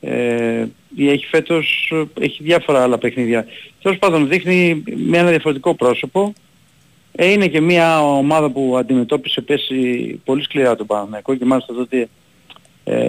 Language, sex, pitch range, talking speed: Greek, male, 125-170 Hz, 140 wpm